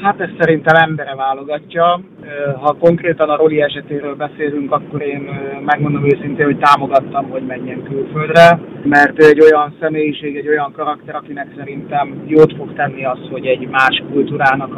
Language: Hungarian